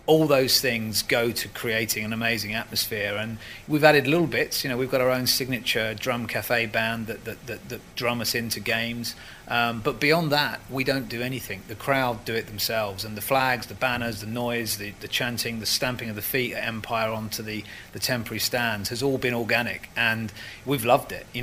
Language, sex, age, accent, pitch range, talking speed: English, male, 30-49, British, 110-125 Hz, 215 wpm